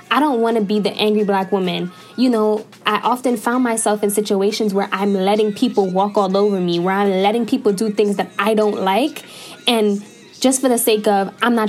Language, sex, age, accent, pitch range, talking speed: English, female, 10-29, American, 210-260 Hz, 220 wpm